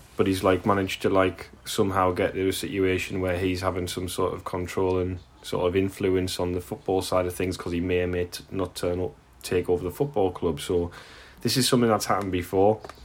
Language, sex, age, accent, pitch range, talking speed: English, male, 10-29, British, 85-95 Hz, 220 wpm